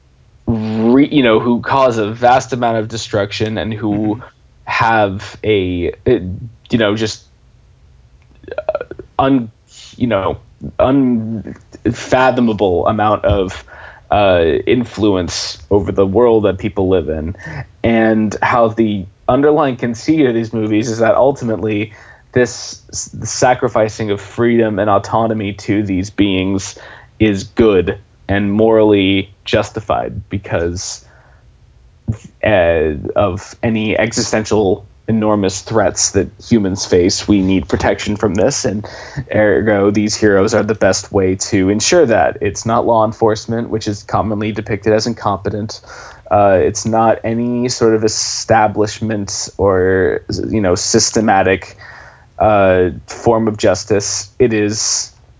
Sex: male